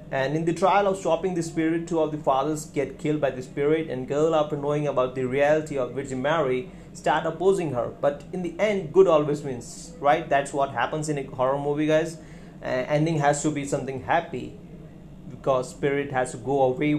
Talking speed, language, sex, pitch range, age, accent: 210 wpm, Hindi, male, 135-165 Hz, 30-49, native